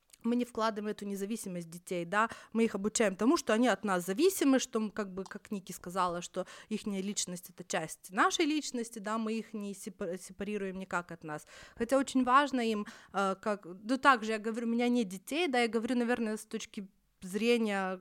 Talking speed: 190 wpm